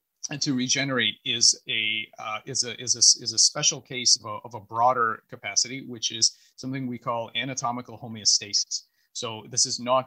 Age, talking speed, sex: 30-49, 185 wpm, male